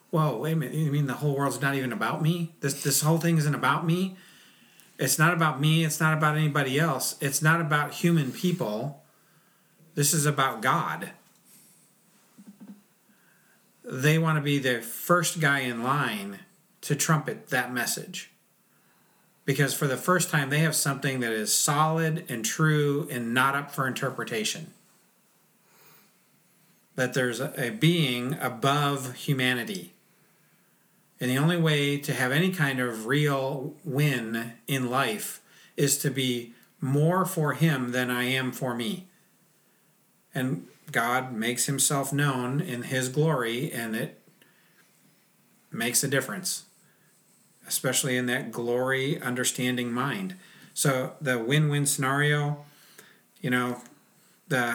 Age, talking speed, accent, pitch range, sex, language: 40-59, 140 wpm, American, 130-165 Hz, male, English